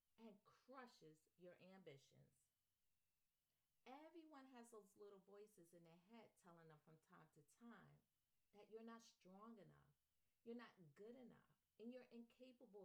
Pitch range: 165-230 Hz